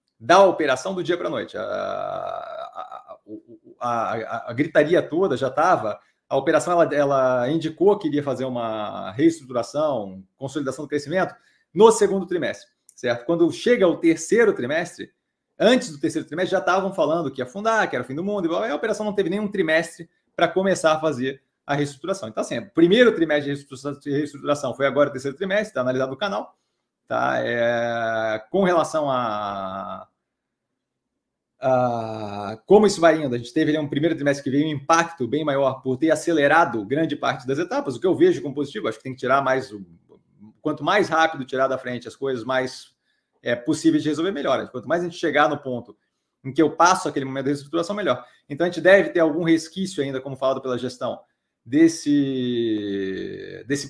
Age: 30-49